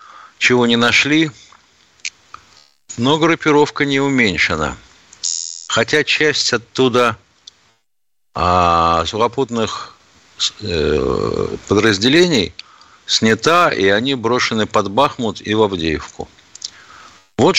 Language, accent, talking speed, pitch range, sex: Russian, native, 80 wpm, 100-140 Hz, male